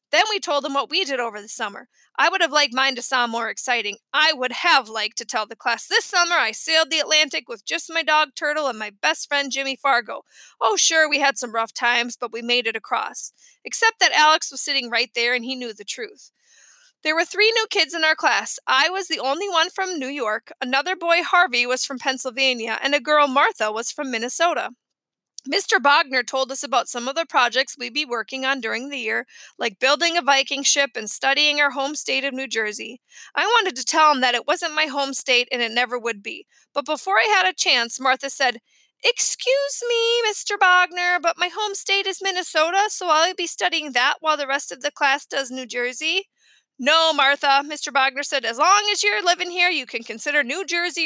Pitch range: 255-345 Hz